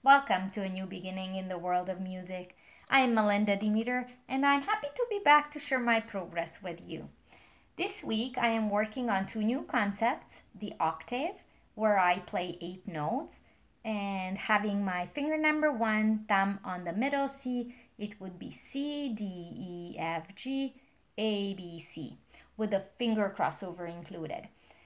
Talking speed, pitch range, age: 165 wpm, 190-255 Hz, 20-39